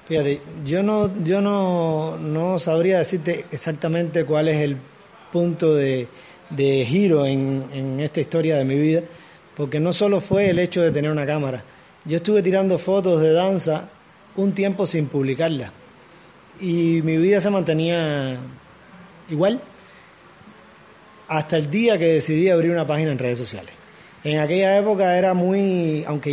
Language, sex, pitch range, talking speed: Spanish, male, 150-185 Hz, 150 wpm